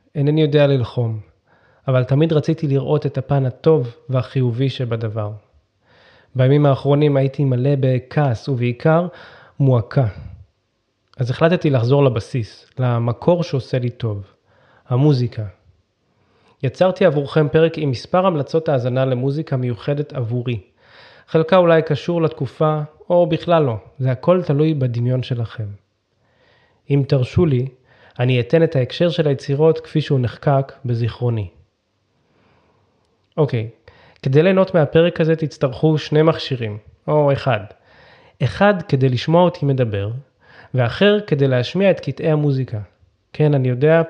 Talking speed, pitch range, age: 120 wpm, 120-155 Hz, 20-39